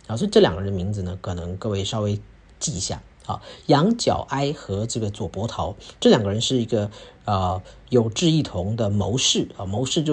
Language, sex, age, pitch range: Chinese, male, 40-59, 105-145 Hz